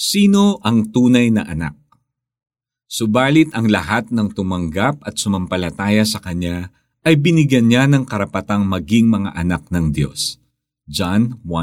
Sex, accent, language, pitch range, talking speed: male, native, Filipino, 105-140 Hz, 130 wpm